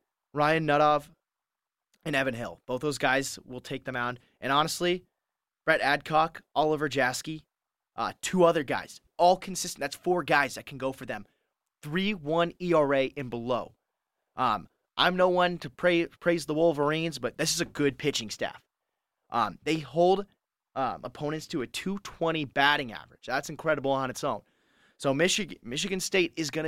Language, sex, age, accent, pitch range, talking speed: English, male, 20-39, American, 135-170 Hz, 165 wpm